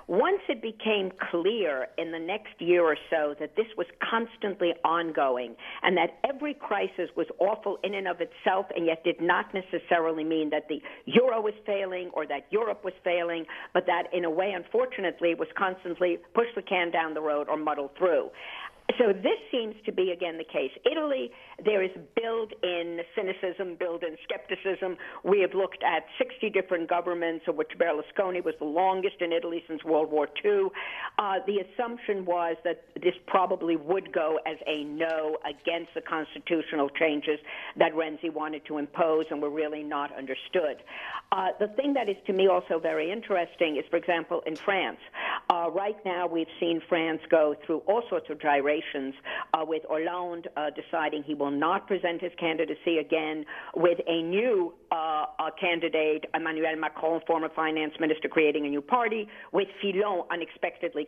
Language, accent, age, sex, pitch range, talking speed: English, American, 50-69, female, 160-200 Hz, 175 wpm